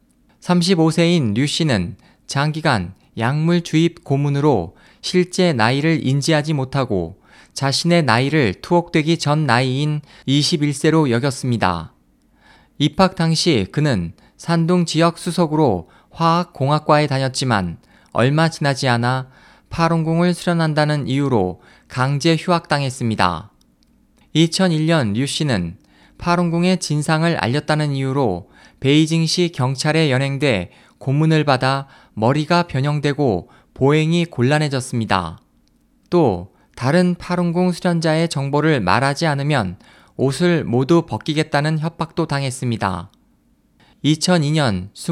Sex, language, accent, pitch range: male, Korean, native, 125-165 Hz